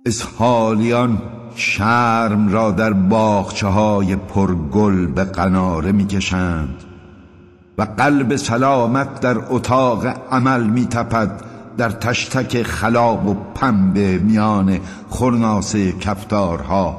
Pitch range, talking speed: 90-115 Hz, 90 wpm